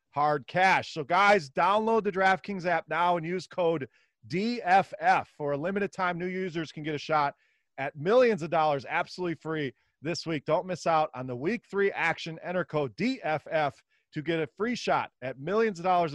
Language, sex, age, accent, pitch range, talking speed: English, male, 40-59, American, 150-195 Hz, 190 wpm